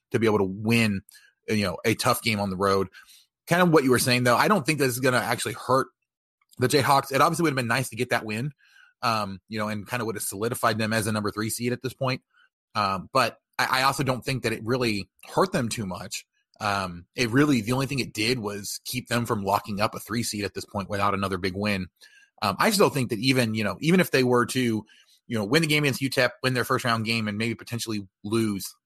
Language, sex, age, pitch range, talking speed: English, male, 30-49, 100-125 Hz, 265 wpm